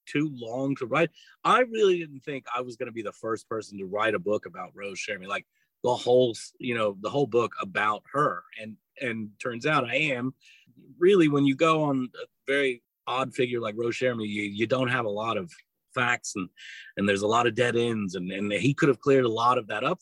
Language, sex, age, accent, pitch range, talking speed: English, male, 30-49, American, 110-155 Hz, 235 wpm